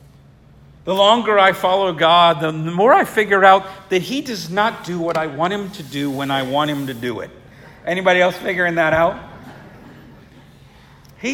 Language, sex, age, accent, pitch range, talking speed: English, male, 50-69, American, 145-205 Hz, 180 wpm